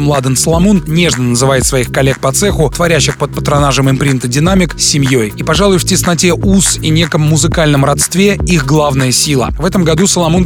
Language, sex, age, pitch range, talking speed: Russian, male, 20-39, 135-165 Hz, 170 wpm